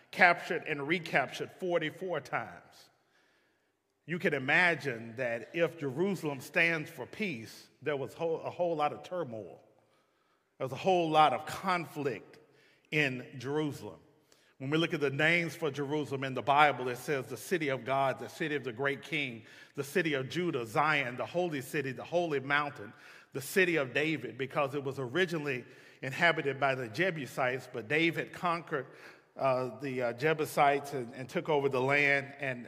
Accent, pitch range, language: American, 135-160 Hz, English